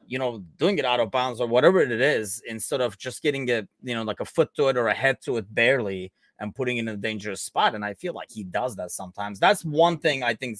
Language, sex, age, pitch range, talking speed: English, male, 30-49, 105-135 Hz, 275 wpm